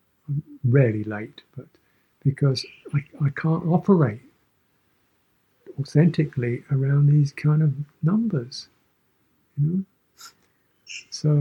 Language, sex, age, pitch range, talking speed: English, male, 60-79, 125-150 Hz, 90 wpm